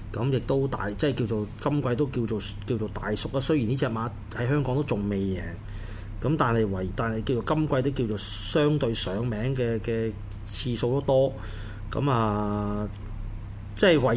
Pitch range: 105-140 Hz